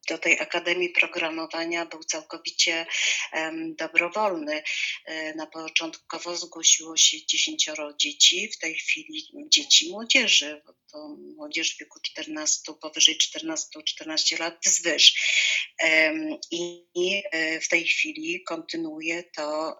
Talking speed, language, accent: 105 wpm, Polish, native